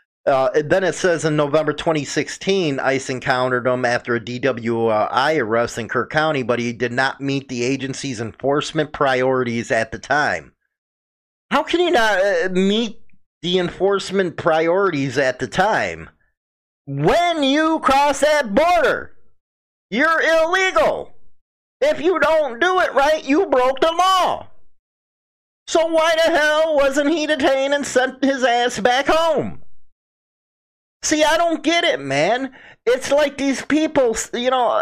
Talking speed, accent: 140 wpm, American